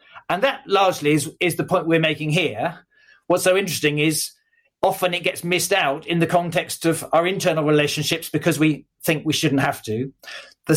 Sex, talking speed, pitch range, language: male, 190 wpm, 150-205 Hz, English